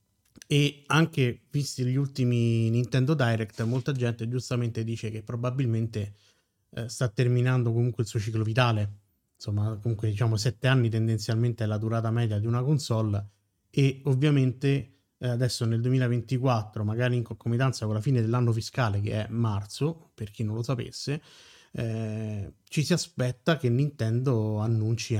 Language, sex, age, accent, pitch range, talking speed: Italian, male, 30-49, native, 110-130 Hz, 150 wpm